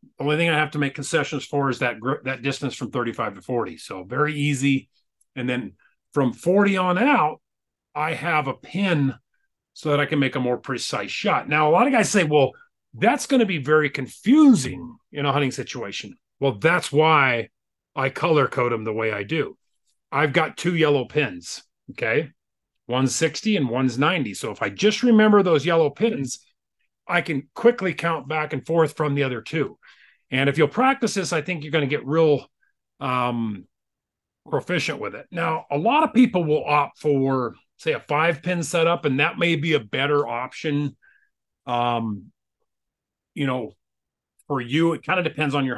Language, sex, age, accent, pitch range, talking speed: English, male, 40-59, American, 130-170 Hz, 185 wpm